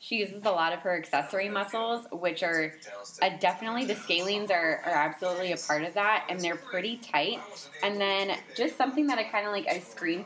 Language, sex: English, female